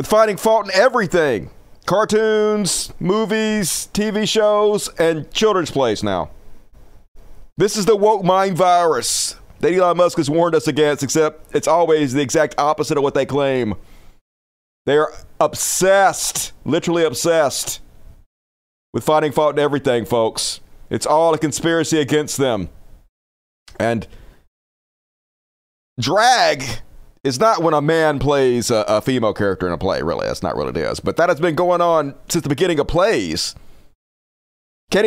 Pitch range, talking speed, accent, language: 125-200 Hz, 145 wpm, American, English